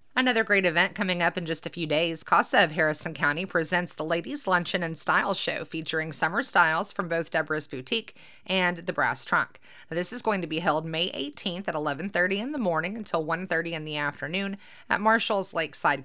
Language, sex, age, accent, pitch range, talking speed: English, female, 30-49, American, 155-185 Hz, 200 wpm